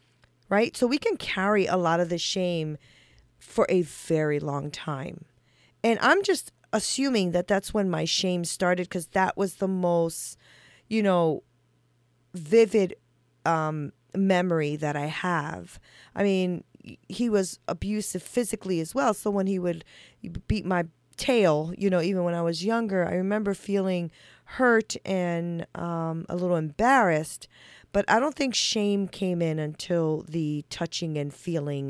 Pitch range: 155-200 Hz